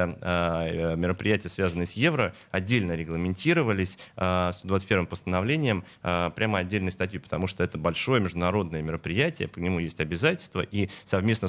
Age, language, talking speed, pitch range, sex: 30-49, Russian, 125 wpm, 90-105 Hz, male